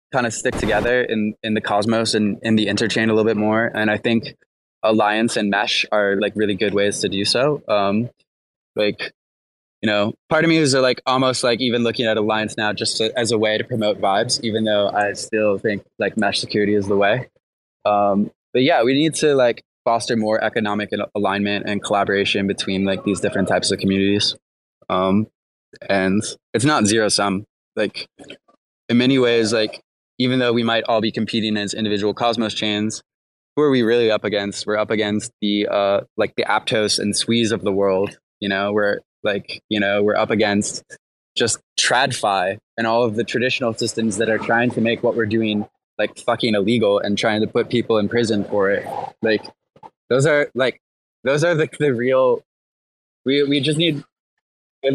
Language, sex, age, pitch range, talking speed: English, male, 20-39, 105-120 Hz, 195 wpm